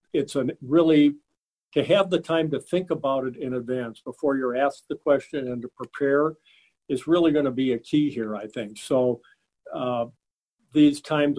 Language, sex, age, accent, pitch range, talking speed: English, male, 50-69, American, 125-150 Hz, 185 wpm